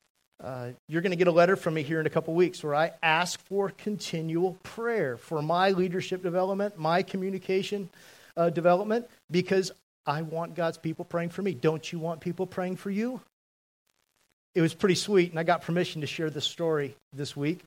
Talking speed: 195 wpm